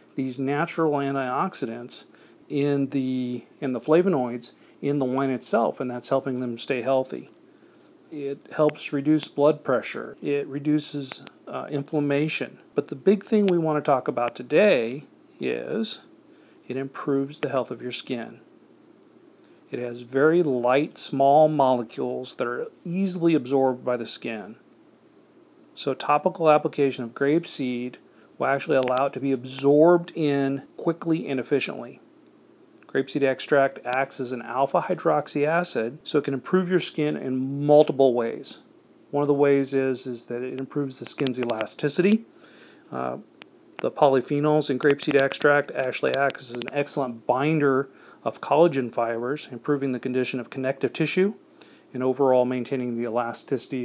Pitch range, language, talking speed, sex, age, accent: 130-150 Hz, English, 145 wpm, male, 40-59, American